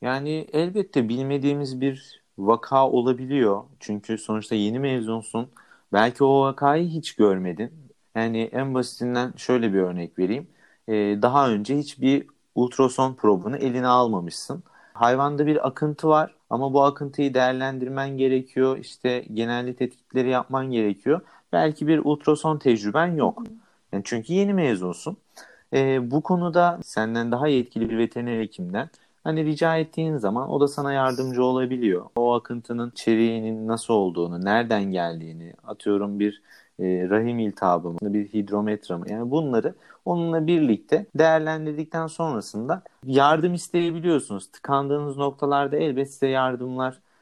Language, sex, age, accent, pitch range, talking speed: Turkish, male, 40-59, native, 115-145 Hz, 125 wpm